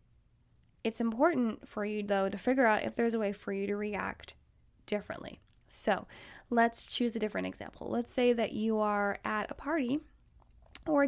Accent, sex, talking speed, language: American, female, 175 wpm, English